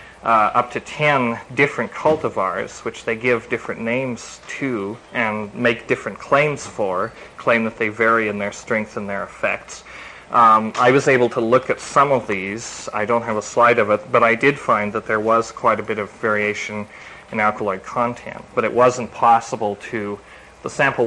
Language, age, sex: English, 30-49, male